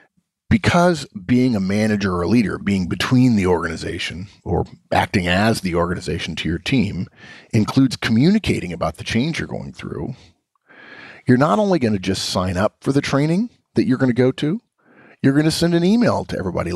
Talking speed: 185 wpm